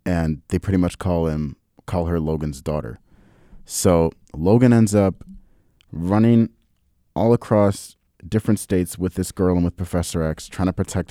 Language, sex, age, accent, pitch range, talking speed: English, male, 30-49, American, 80-100 Hz, 155 wpm